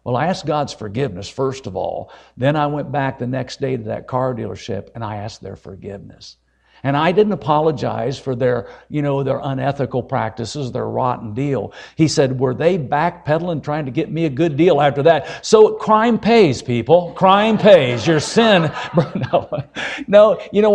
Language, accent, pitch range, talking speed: English, American, 130-165 Hz, 180 wpm